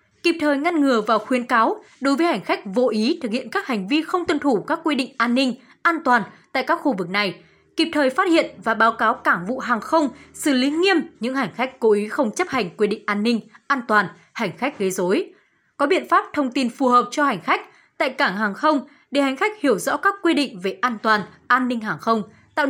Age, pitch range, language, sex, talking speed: 20-39, 230-315 Hz, Vietnamese, female, 250 wpm